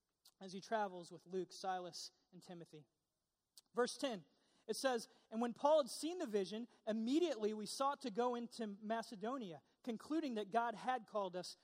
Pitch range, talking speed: 200-245 Hz, 165 wpm